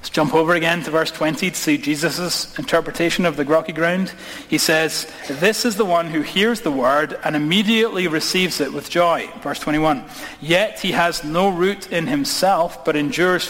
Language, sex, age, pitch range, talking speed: English, male, 30-49, 155-195 Hz, 185 wpm